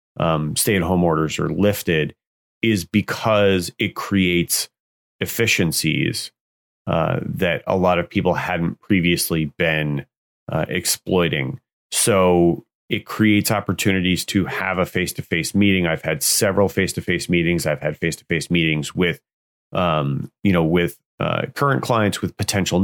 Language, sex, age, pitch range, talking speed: English, male, 30-49, 85-100 Hz, 130 wpm